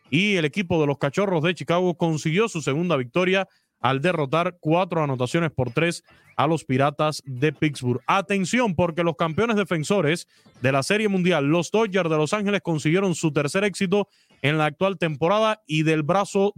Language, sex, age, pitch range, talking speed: Spanish, male, 30-49, 145-195 Hz, 175 wpm